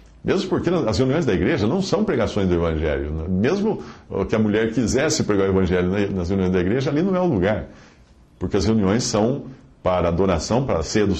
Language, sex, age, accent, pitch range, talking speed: Portuguese, male, 50-69, Brazilian, 90-125 Hz, 200 wpm